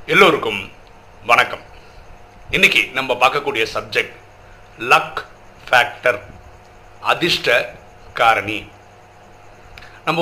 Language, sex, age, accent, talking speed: Tamil, male, 50-69, native, 65 wpm